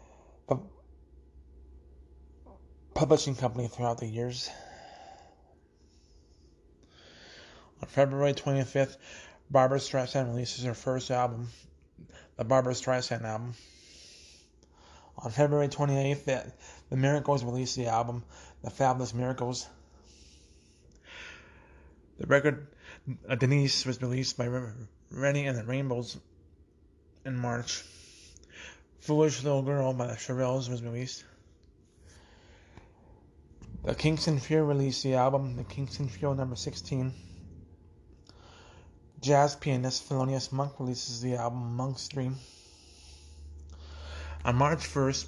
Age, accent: 20-39, American